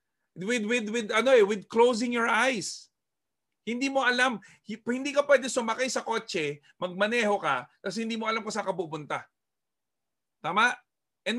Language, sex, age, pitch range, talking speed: Filipino, male, 40-59, 185-240 Hz, 155 wpm